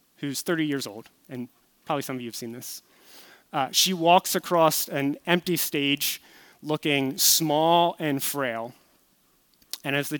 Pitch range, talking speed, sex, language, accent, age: 135-160 Hz, 155 wpm, male, English, American, 30-49